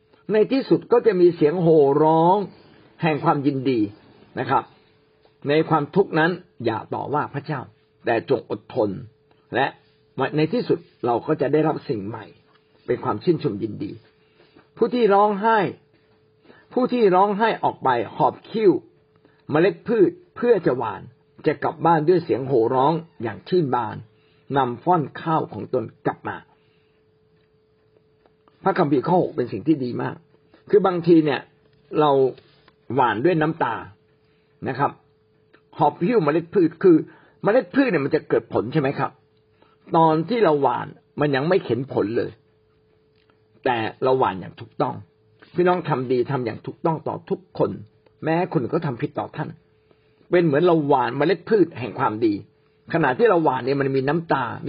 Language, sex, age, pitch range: Thai, male, 60-79, 140-180 Hz